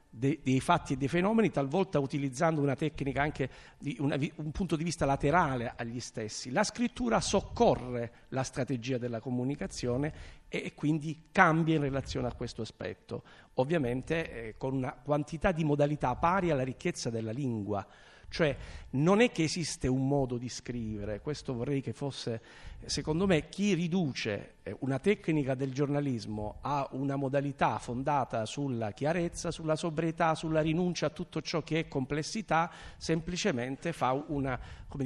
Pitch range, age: 130-170 Hz, 50-69